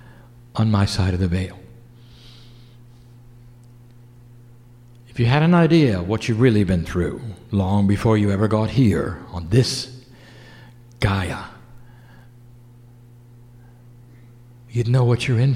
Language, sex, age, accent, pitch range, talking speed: English, male, 60-79, American, 120-145 Hz, 115 wpm